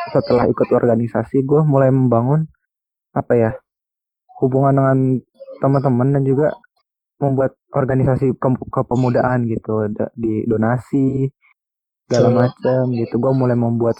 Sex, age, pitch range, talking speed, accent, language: male, 20-39, 120-145 Hz, 115 wpm, native, Indonesian